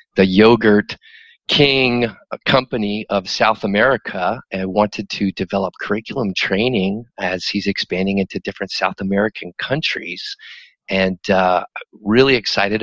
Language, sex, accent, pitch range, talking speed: English, male, American, 100-115 Hz, 115 wpm